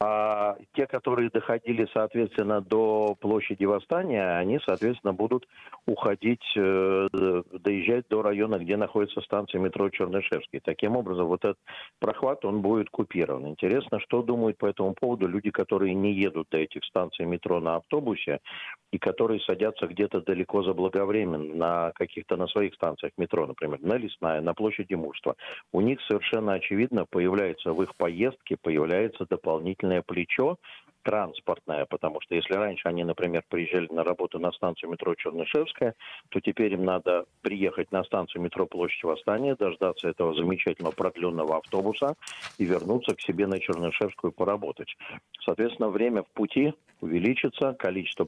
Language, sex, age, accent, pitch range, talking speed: Russian, male, 40-59, native, 90-110 Hz, 145 wpm